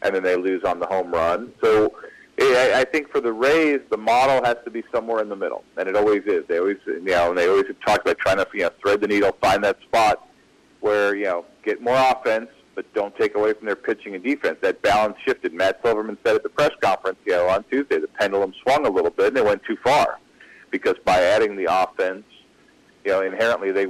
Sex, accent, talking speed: male, American, 245 wpm